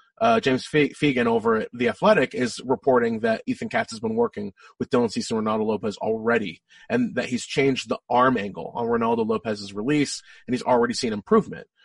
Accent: American